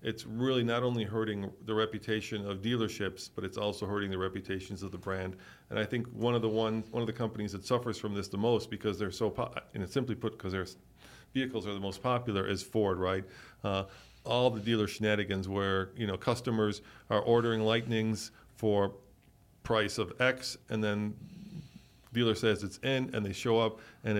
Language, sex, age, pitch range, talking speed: English, male, 40-59, 100-115 Hz, 200 wpm